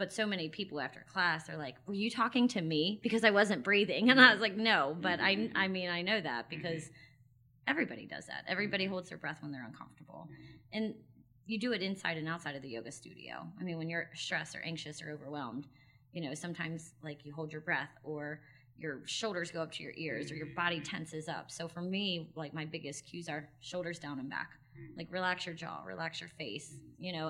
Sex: female